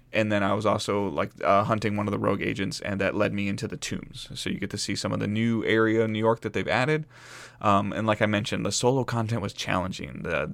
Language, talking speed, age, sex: English, 270 wpm, 20-39, male